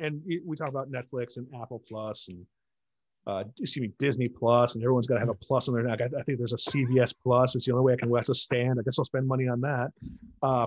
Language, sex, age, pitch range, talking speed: English, male, 30-49, 120-150 Hz, 270 wpm